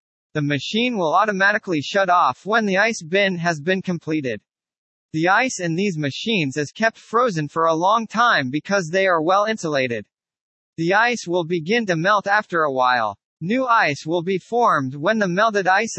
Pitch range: 165-215 Hz